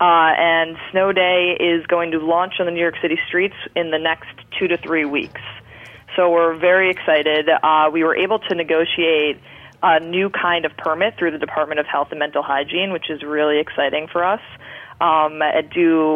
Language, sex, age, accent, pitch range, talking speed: English, female, 20-39, American, 150-170 Hz, 195 wpm